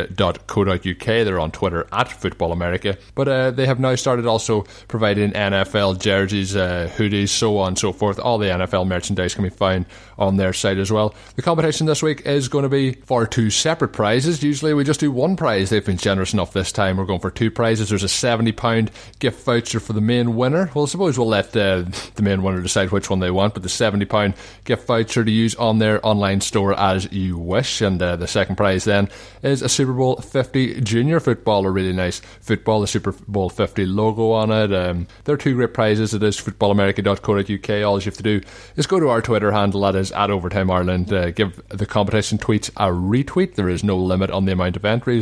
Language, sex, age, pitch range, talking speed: English, male, 20-39, 95-120 Hz, 230 wpm